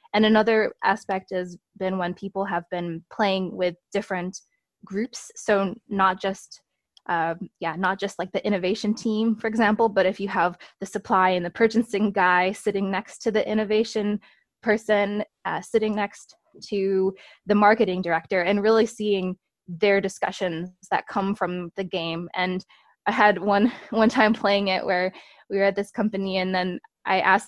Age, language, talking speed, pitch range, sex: 20-39, English, 170 wpm, 185-215 Hz, female